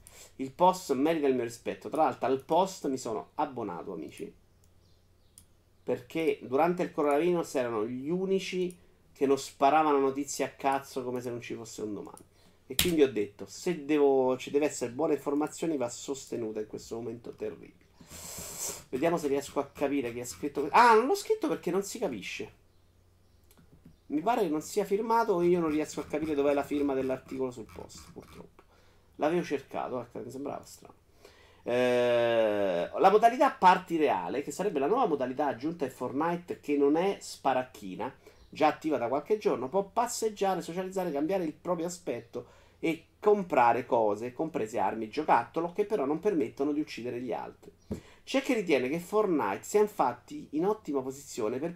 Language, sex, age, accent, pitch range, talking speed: Italian, male, 40-59, native, 130-180 Hz, 170 wpm